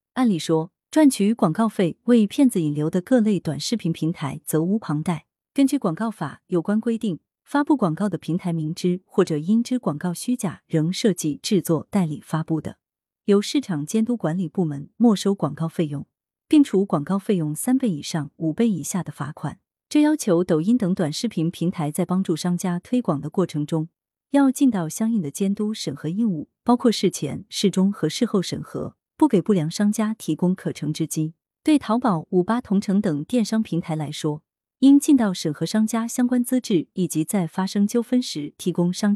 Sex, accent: female, native